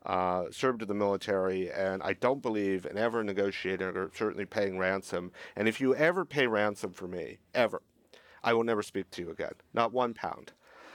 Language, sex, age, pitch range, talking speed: English, male, 50-69, 95-110 Hz, 190 wpm